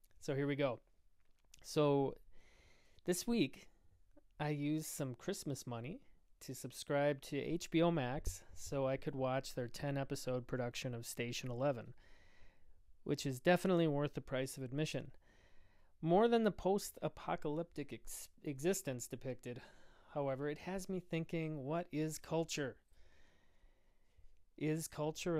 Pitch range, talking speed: 115-155 Hz, 125 wpm